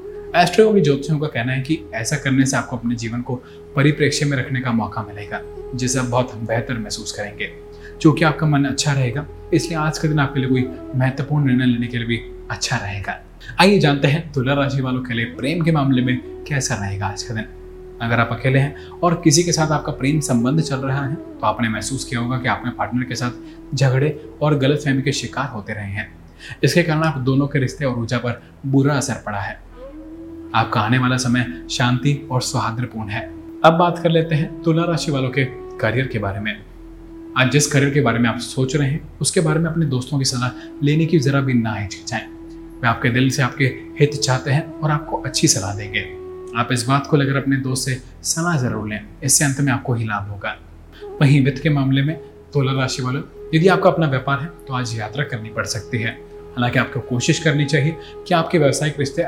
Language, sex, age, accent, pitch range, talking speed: Hindi, male, 20-39, native, 115-150 Hz, 215 wpm